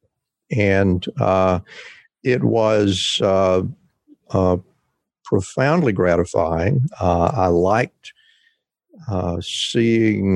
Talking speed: 75 wpm